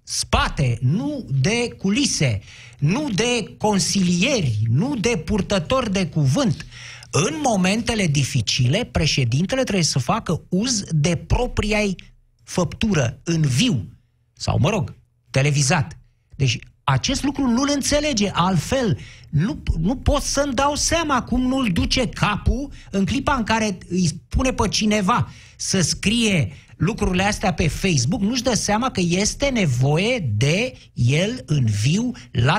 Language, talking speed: Romanian, 130 wpm